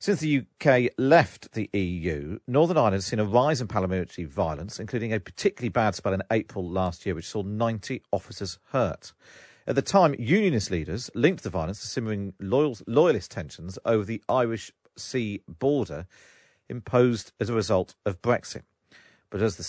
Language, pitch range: English, 95-135 Hz